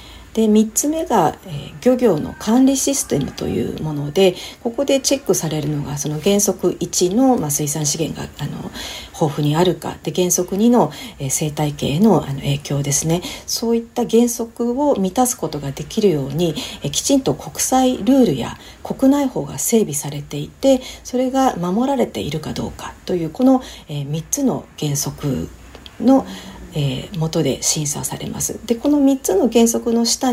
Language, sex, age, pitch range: Japanese, female, 40-59, 155-250 Hz